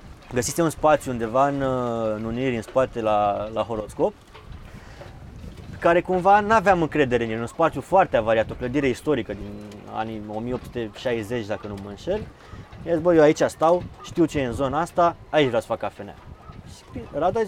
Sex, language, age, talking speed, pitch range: male, Romanian, 20-39, 170 wpm, 110-165 Hz